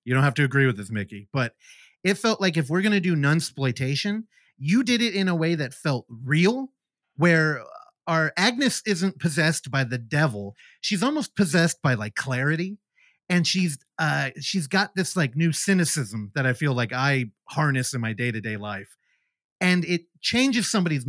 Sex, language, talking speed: male, English, 180 wpm